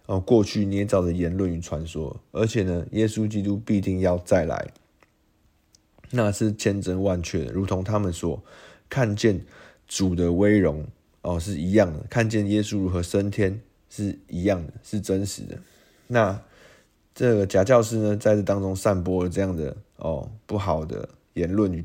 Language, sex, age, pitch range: Chinese, male, 20-39, 90-110 Hz